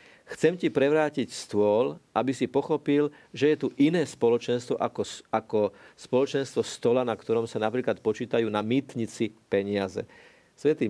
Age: 50-69